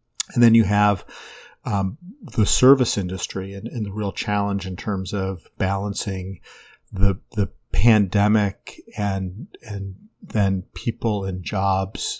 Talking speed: 130 wpm